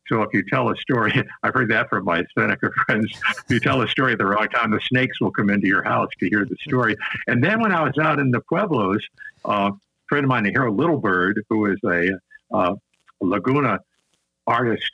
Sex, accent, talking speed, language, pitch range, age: male, American, 235 wpm, English, 105-145 Hz, 60-79